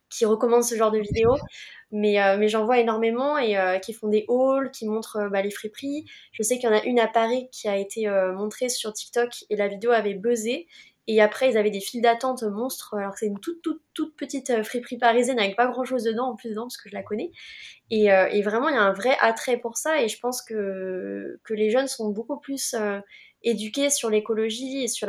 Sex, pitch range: female, 205-240 Hz